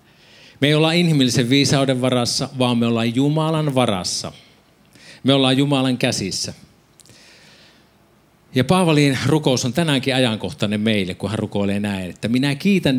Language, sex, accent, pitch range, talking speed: Finnish, male, native, 115-145 Hz, 135 wpm